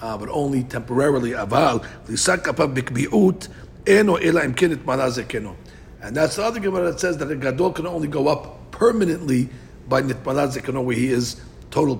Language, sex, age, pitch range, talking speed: English, male, 60-79, 125-175 Hz, 120 wpm